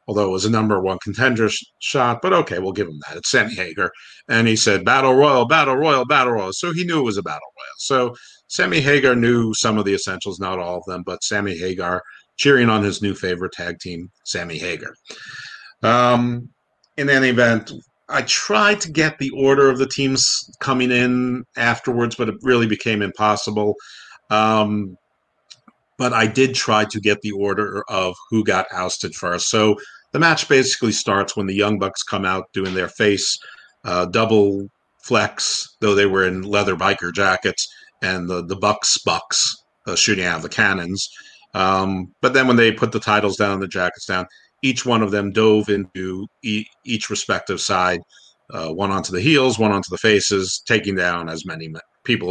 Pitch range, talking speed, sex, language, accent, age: 95-120 Hz, 190 wpm, male, English, American, 50-69